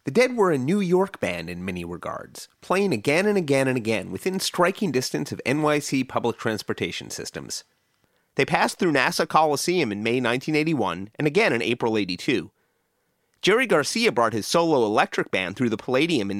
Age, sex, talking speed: 30-49, male, 175 wpm